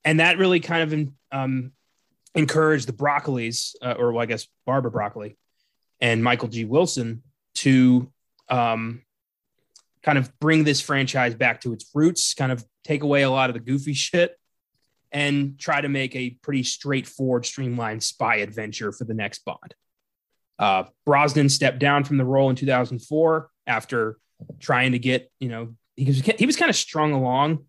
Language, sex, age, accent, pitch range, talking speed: English, male, 20-39, American, 125-150 Hz, 165 wpm